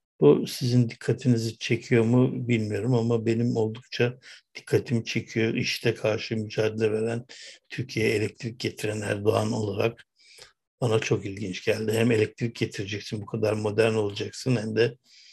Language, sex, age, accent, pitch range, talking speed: Turkish, male, 60-79, native, 110-120 Hz, 130 wpm